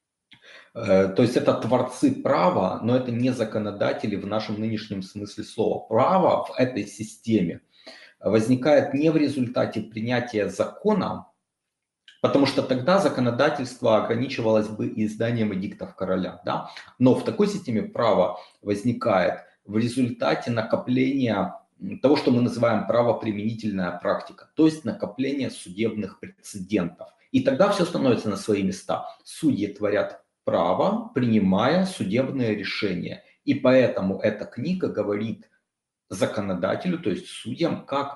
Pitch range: 100-130 Hz